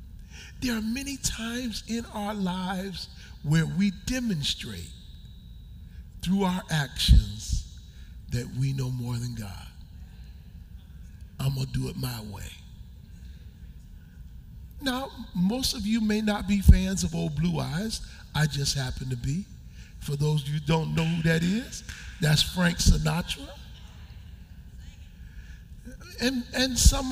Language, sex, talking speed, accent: English, male, 130 wpm, American